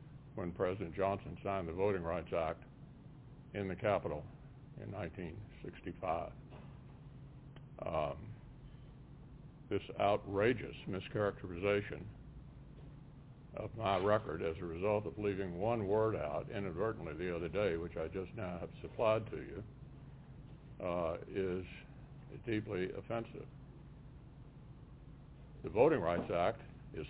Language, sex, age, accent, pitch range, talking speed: English, male, 60-79, American, 100-135 Hz, 110 wpm